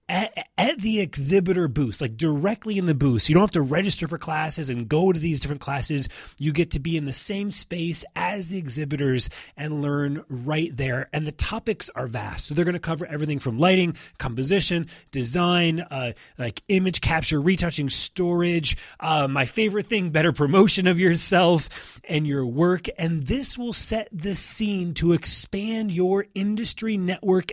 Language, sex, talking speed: English, male, 175 wpm